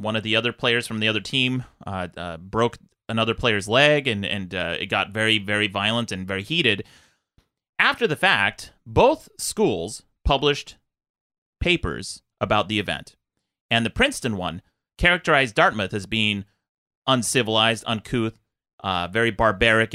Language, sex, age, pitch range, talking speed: English, male, 30-49, 110-165 Hz, 145 wpm